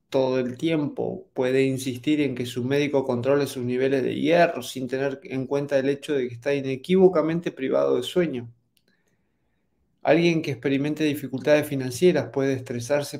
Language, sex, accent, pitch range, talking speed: English, male, Argentinian, 130-155 Hz, 155 wpm